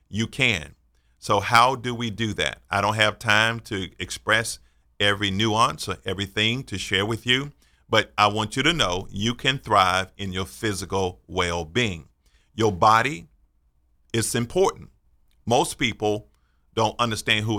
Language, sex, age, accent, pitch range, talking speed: English, male, 50-69, American, 70-110 Hz, 150 wpm